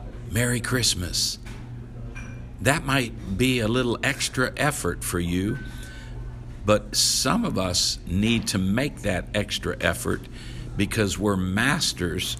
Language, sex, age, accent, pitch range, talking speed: English, male, 60-79, American, 100-125 Hz, 115 wpm